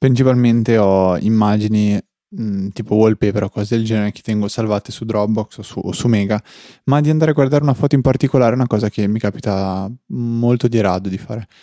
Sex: male